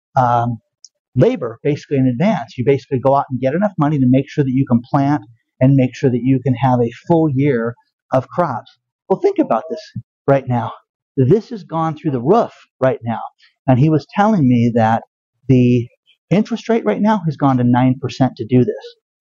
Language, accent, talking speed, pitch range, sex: English, American, 200 wpm, 125-160 Hz, male